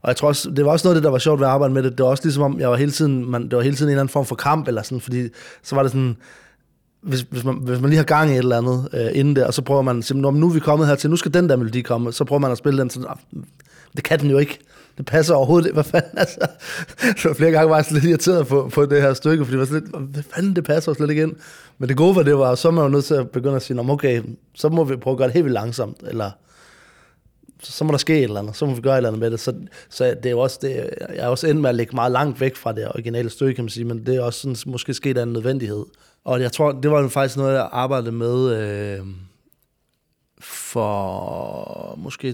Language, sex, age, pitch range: Danish, male, 20-39, 120-145 Hz